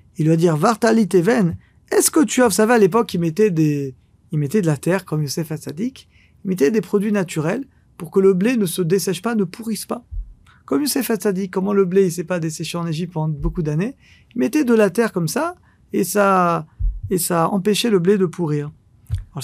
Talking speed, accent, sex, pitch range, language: 230 wpm, French, male, 160-230 Hz, French